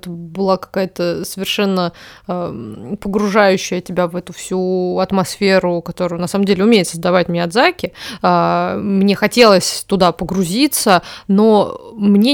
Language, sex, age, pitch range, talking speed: Russian, female, 20-39, 180-225 Hz, 105 wpm